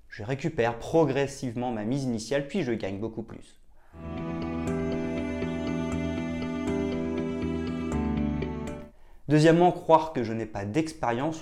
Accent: French